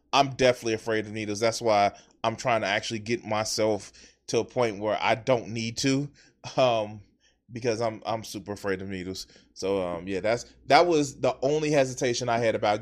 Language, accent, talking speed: English, American, 190 wpm